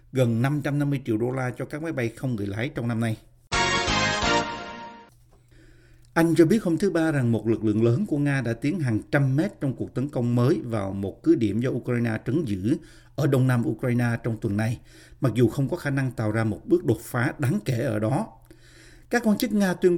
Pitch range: 115-150 Hz